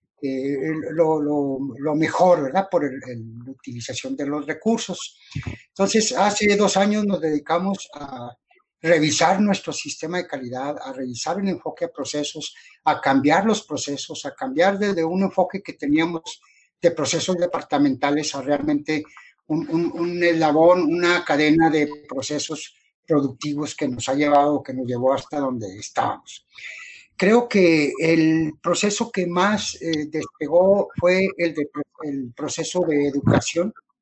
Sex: male